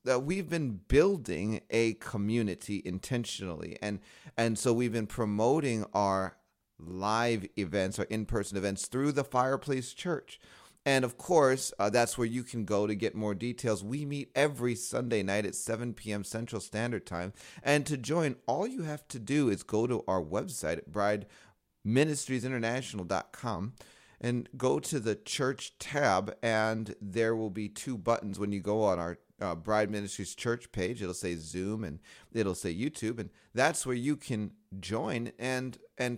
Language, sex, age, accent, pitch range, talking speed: English, male, 30-49, American, 100-125 Hz, 165 wpm